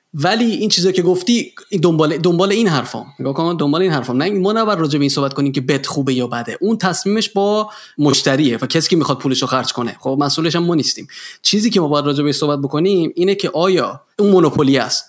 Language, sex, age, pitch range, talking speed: Persian, male, 20-39, 140-185 Hz, 210 wpm